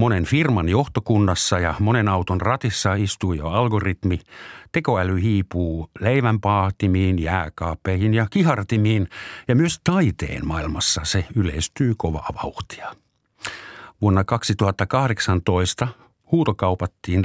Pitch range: 90-120 Hz